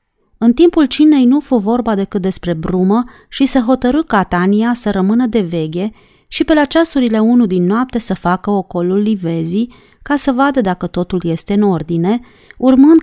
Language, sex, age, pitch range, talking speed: Romanian, female, 30-49, 180-245 Hz, 175 wpm